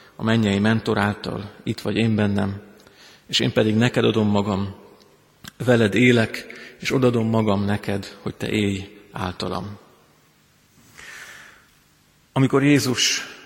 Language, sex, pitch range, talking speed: Hungarian, male, 110-125 Hz, 115 wpm